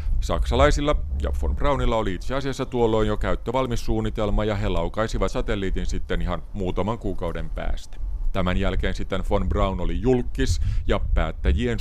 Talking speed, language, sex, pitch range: 140 wpm, Finnish, male, 85-105 Hz